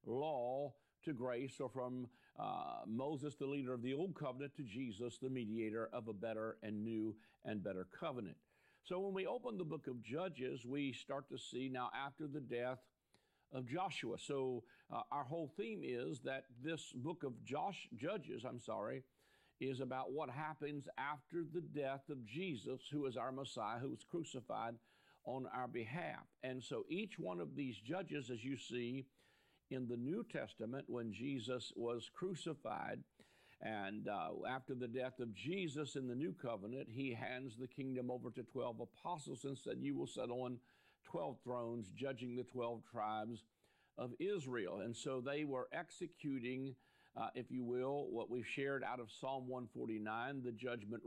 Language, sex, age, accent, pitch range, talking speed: English, male, 50-69, American, 120-145 Hz, 170 wpm